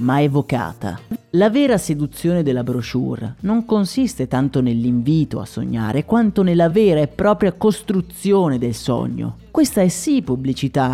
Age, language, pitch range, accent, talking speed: 30-49, Italian, 135-200 Hz, native, 135 wpm